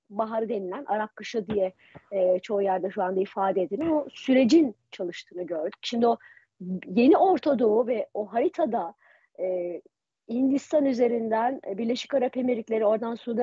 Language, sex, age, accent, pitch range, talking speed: Turkish, female, 40-59, native, 210-285 Hz, 145 wpm